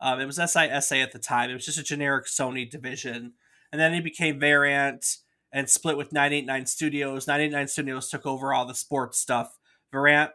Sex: male